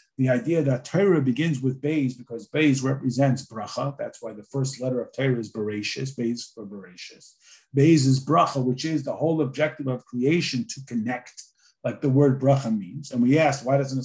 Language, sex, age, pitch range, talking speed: English, male, 50-69, 130-175 Hz, 190 wpm